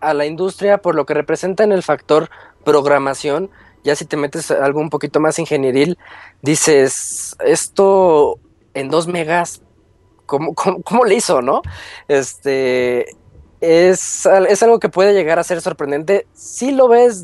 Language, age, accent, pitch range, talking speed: Spanish, 20-39, Mexican, 145-205 Hz, 155 wpm